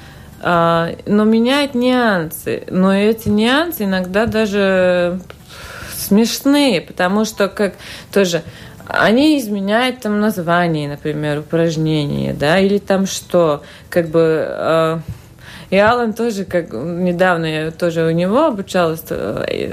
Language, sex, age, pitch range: Russian, female, 30-49, 175-235 Hz